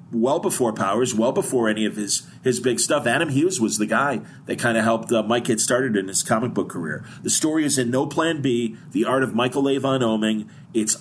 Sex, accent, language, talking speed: male, American, English, 235 wpm